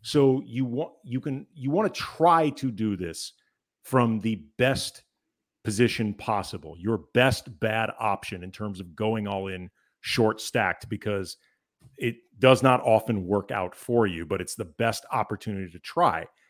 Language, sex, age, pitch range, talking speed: English, male, 40-59, 105-125 Hz, 155 wpm